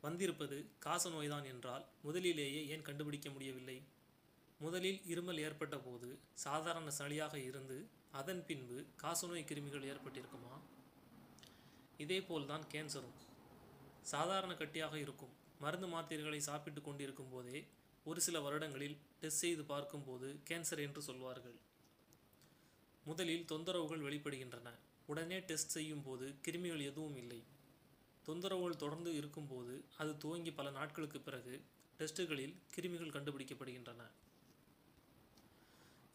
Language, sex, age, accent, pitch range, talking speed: Tamil, male, 30-49, native, 135-165 Hz, 100 wpm